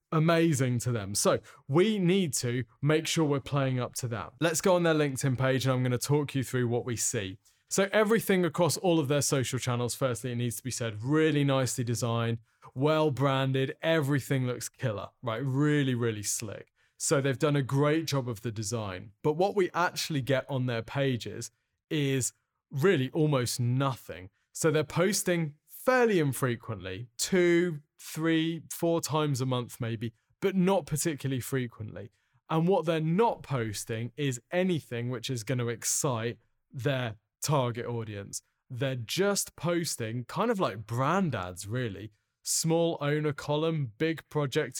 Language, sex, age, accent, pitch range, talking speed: English, male, 20-39, British, 120-155 Hz, 165 wpm